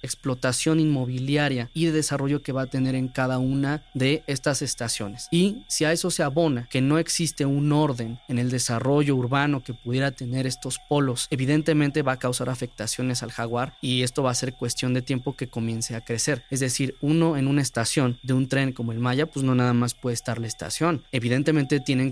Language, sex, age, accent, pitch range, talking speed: Spanish, male, 20-39, Mexican, 125-145 Hz, 205 wpm